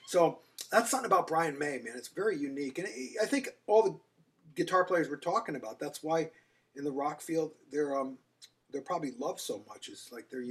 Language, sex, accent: English, male, American